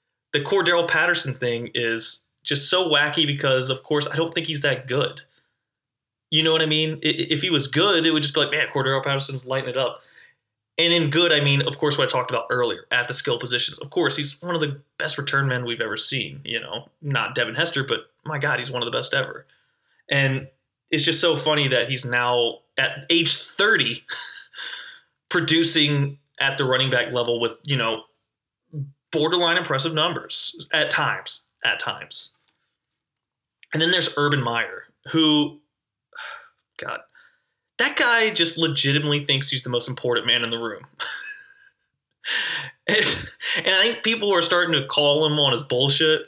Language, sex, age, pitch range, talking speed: English, male, 20-39, 135-170 Hz, 180 wpm